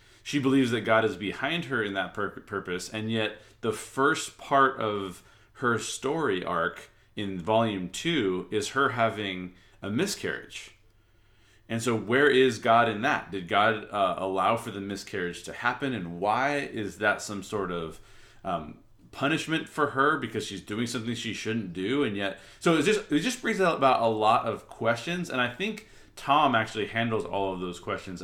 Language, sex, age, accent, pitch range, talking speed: English, male, 30-49, American, 95-120 Hz, 180 wpm